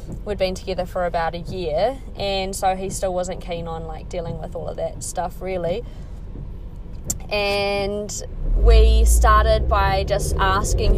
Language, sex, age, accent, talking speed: English, female, 20-39, Australian, 155 wpm